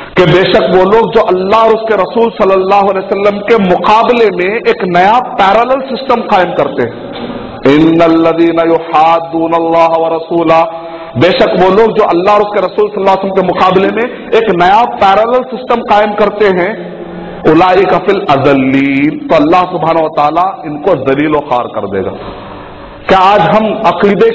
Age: 50-69